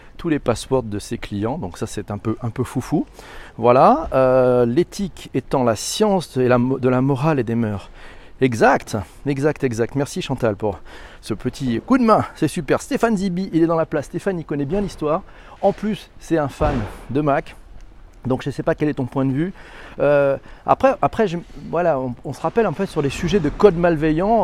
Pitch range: 125-170 Hz